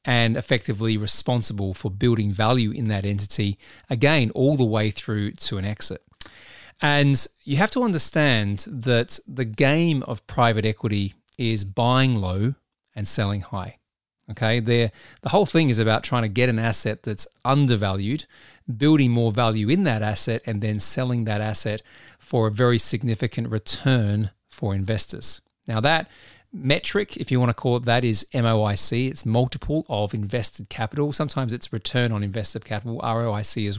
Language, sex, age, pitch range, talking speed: English, male, 30-49, 110-130 Hz, 160 wpm